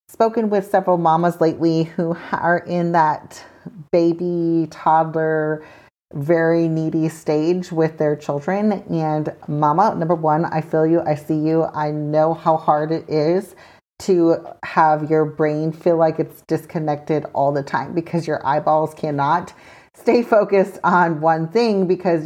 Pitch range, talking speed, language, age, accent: 155-190 Hz, 145 wpm, English, 30-49, American